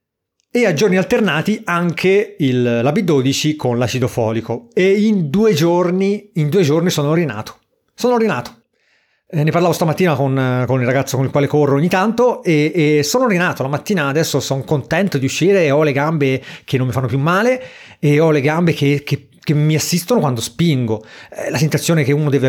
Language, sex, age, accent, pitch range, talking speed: Italian, male, 30-49, native, 130-175 Hz, 190 wpm